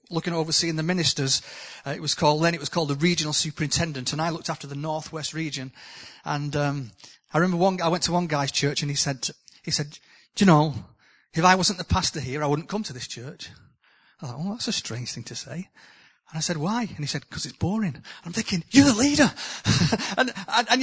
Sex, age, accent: male, 30-49, British